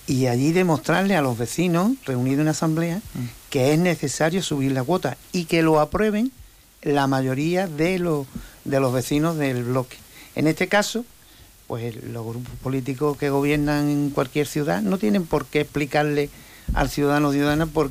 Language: Spanish